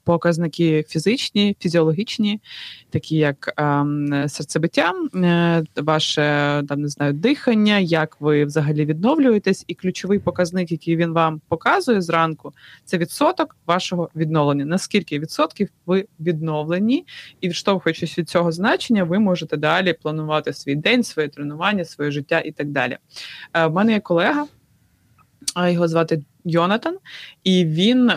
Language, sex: Ukrainian, female